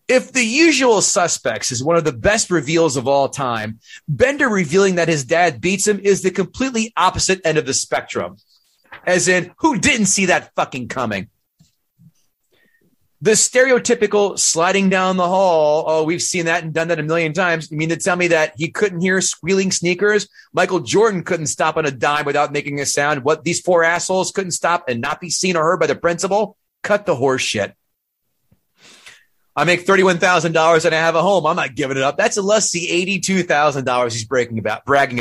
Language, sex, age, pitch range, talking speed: English, male, 30-49, 140-190 Hz, 195 wpm